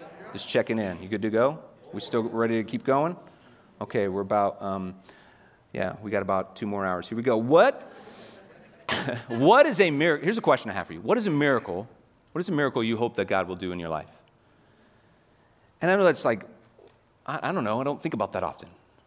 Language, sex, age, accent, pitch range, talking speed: English, male, 30-49, American, 105-135 Hz, 225 wpm